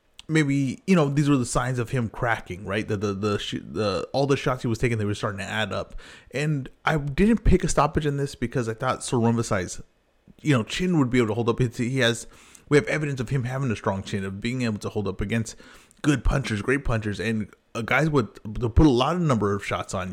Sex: male